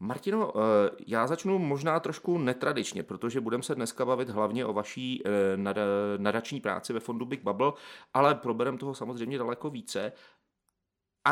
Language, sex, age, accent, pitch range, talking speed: Czech, male, 30-49, native, 105-135 Hz, 145 wpm